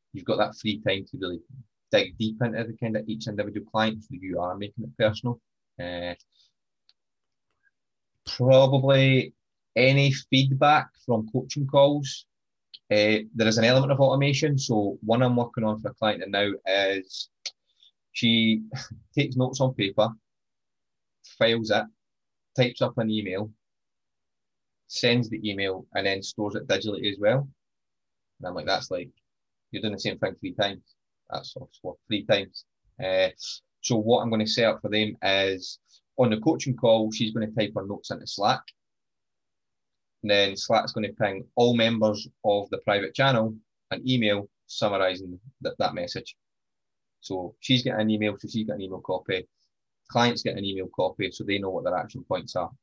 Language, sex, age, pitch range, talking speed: English, male, 20-39, 100-125 Hz, 170 wpm